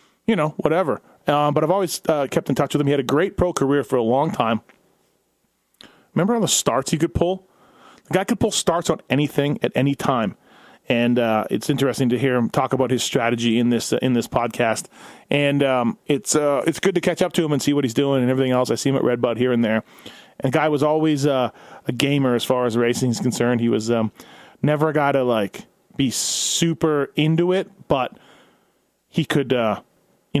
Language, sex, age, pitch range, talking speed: English, male, 30-49, 120-155 Hz, 225 wpm